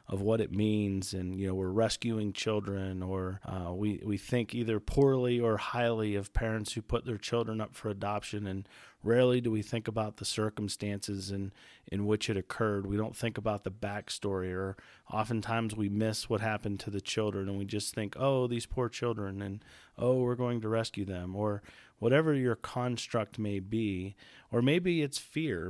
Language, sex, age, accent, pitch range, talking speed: English, male, 40-59, American, 100-120 Hz, 190 wpm